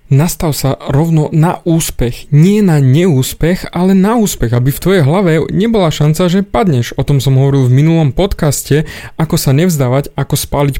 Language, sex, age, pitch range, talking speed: Slovak, male, 20-39, 125-160 Hz, 170 wpm